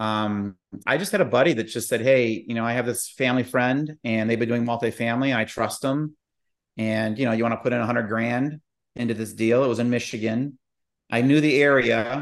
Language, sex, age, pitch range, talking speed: English, male, 40-59, 115-135 Hz, 235 wpm